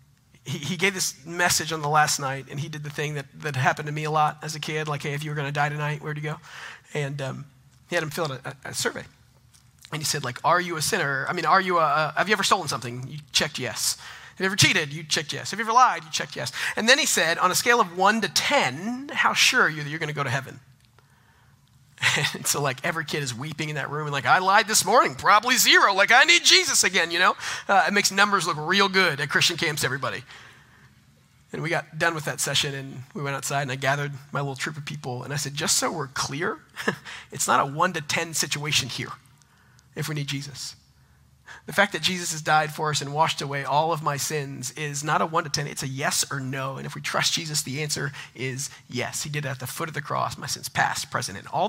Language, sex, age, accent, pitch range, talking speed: English, male, 40-59, American, 140-165 Hz, 260 wpm